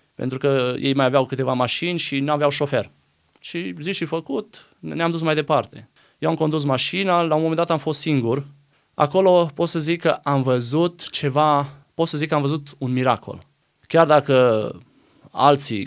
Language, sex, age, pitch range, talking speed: Romanian, male, 20-39, 135-160 Hz, 185 wpm